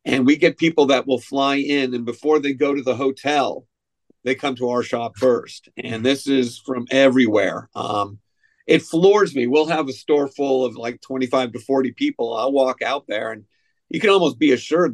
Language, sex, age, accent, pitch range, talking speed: English, male, 50-69, American, 125-145 Hz, 205 wpm